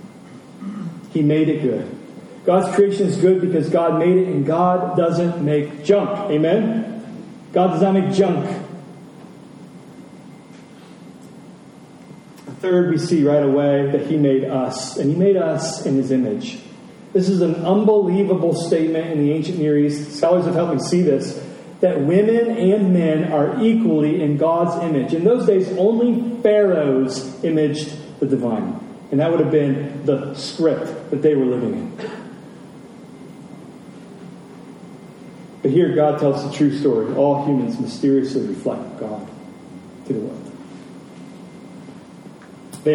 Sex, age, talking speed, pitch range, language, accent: male, 40-59, 140 wpm, 145-200 Hz, English, American